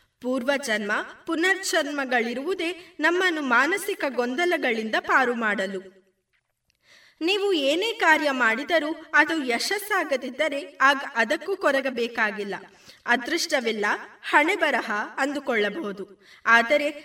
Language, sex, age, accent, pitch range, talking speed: Kannada, female, 20-39, native, 235-325 Hz, 75 wpm